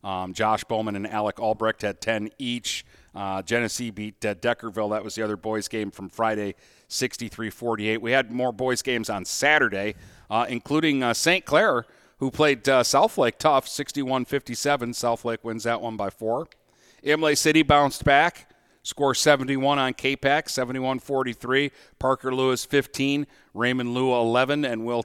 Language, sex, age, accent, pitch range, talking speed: English, male, 40-59, American, 110-135 Hz, 155 wpm